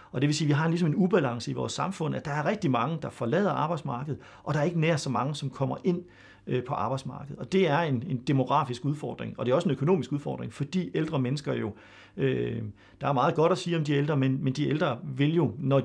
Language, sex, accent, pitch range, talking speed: Danish, male, native, 130-165 Hz, 245 wpm